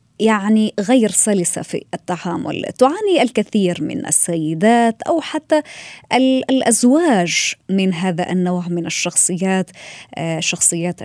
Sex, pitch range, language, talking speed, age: female, 180-225 Hz, Arabic, 100 wpm, 20-39